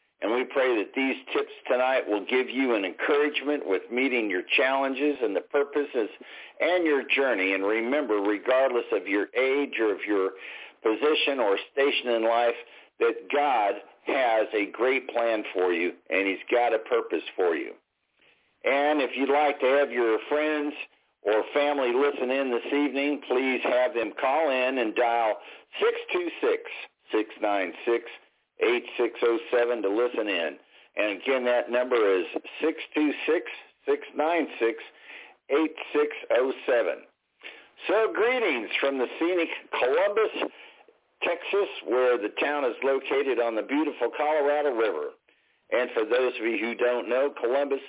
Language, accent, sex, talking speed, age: English, American, male, 140 wpm, 50-69